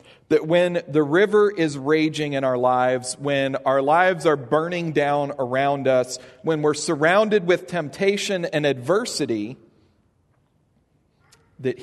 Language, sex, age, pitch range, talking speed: English, male, 40-59, 125-165 Hz, 125 wpm